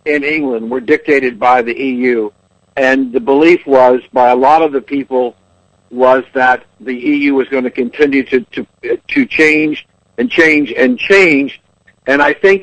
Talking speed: 170 wpm